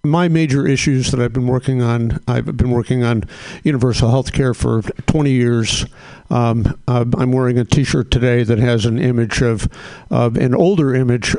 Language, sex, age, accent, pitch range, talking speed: English, male, 60-79, American, 115-135 Hz, 175 wpm